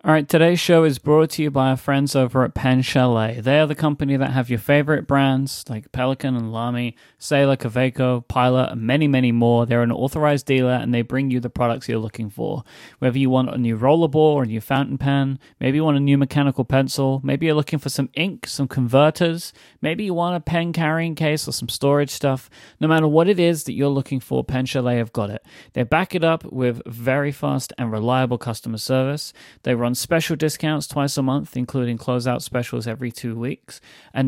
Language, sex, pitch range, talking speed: English, male, 120-150 Hz, 215 wpm